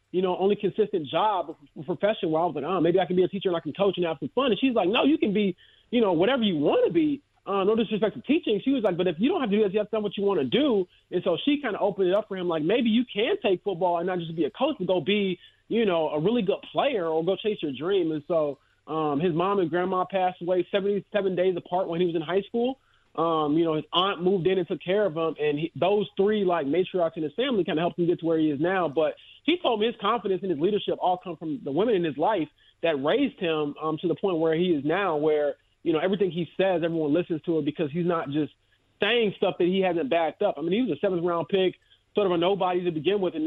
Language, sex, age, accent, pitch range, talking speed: English, male, 20-39, American, 165-205 Hz, 295 wpm